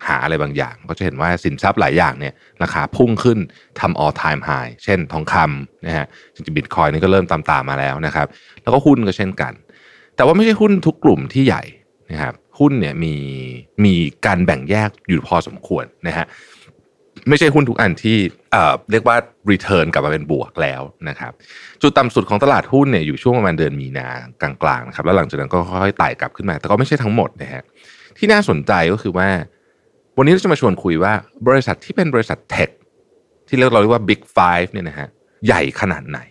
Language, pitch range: Thai, 85-130 Hz